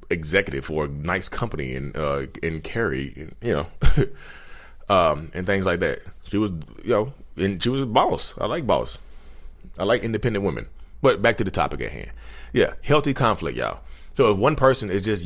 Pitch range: 75-115 Hz